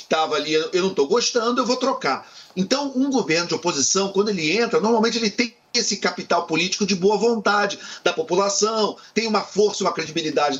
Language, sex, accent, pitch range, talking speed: Portuguese, male, Brazilian, 175-235 Hz, 185 wpm